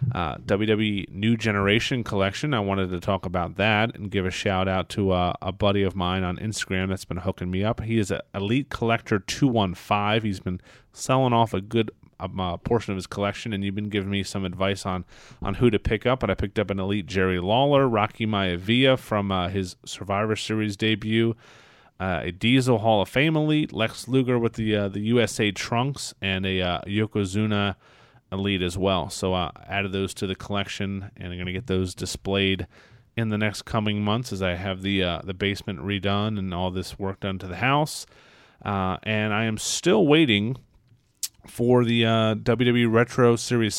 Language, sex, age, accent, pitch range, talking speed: English, male, 30-49, American, 95-115 Hz, 200 wpm